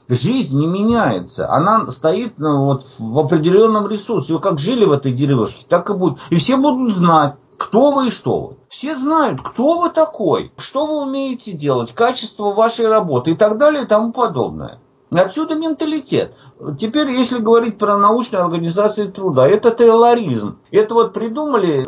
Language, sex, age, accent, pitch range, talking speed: Russian, male, 50-69, native, 180-255 Hz, 160 wpm